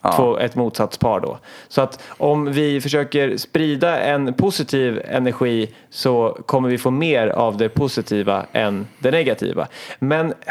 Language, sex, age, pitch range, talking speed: Swedish, male, 30-49, 120-155 Hz, 145 wpm